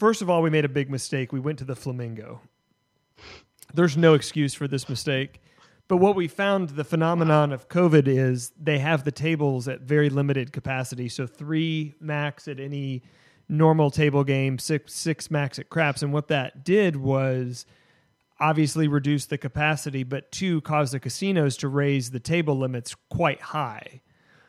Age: 30-49